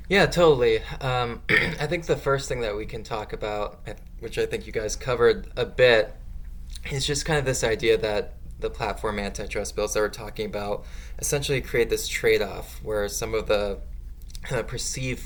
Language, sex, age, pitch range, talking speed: English, male, 20-39, 100-135 Hz, 175 wpm